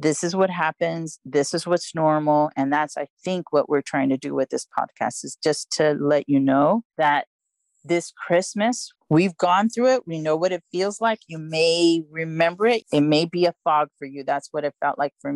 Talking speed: 220 wpm